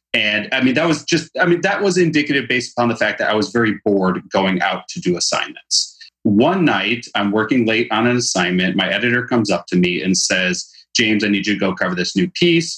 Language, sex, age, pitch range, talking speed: English, male, 30-49, 100-130 Hz, 240 wpm